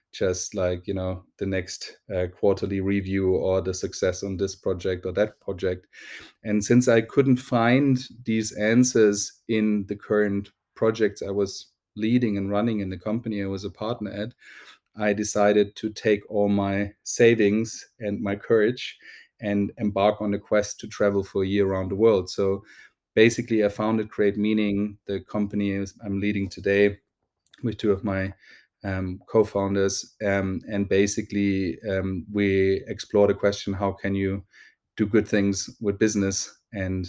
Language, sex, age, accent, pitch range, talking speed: English, male, 30-49, German, 95-105 Hz, 160 wpm